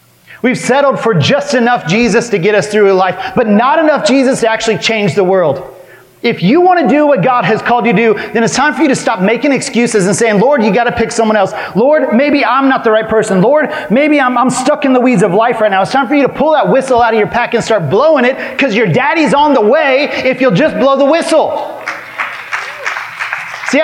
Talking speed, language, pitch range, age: 245 wpm, English, 200-270 Hz, 30-49